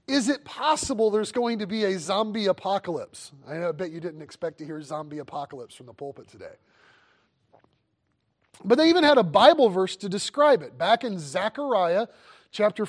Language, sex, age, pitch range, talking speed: English, male, 30-49, 195-260 Hz, 170 wpm